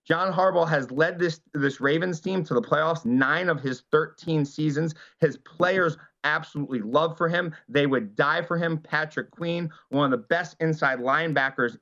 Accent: American